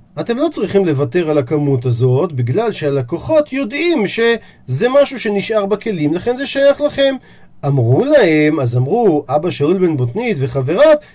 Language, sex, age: Hebrew, male, 40-59